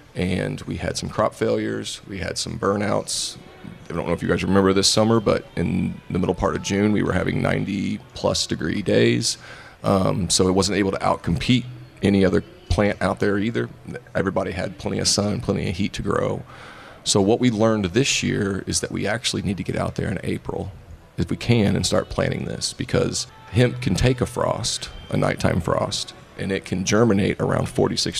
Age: 30-49